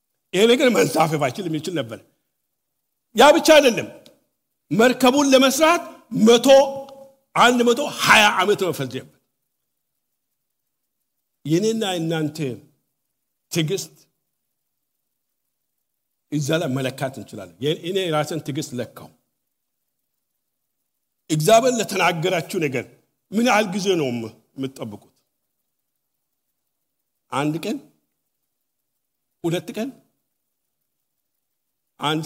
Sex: male